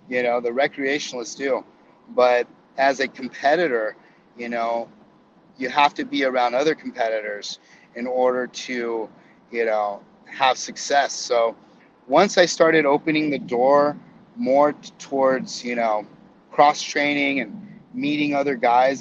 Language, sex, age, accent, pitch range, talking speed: English, male, 30-49, American, 120-150 Hz, 135 wpm